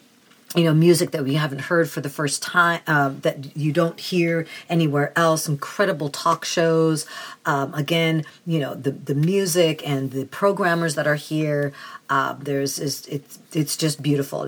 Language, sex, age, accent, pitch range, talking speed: English, female, 40-59, American, 140-170 Hz, 170 wpm